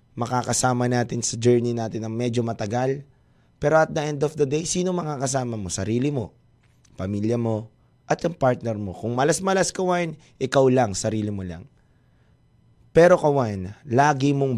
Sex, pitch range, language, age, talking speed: male, 110-150 Hz, Filipino, 20-39, 155 wpm